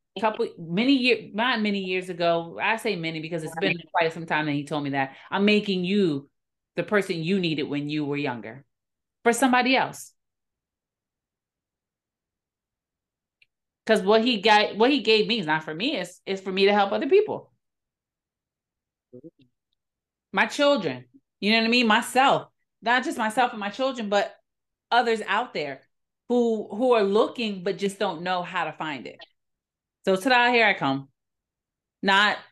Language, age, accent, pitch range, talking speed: English, 30-49, American, 155-215 Hz, 170 wpm